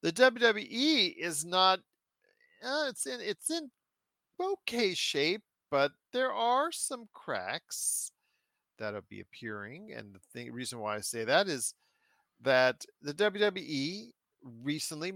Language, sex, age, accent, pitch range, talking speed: English, male, 40-59, American, 125-175 Hz, 125 wpm